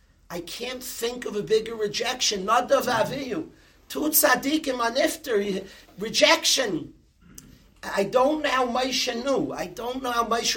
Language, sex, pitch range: English, male, 195-250 Hz